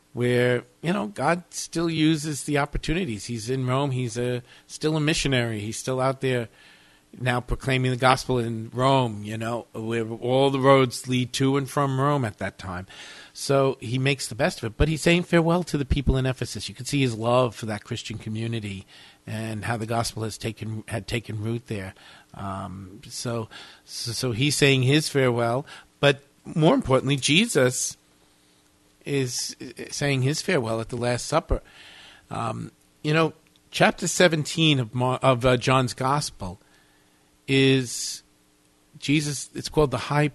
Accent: American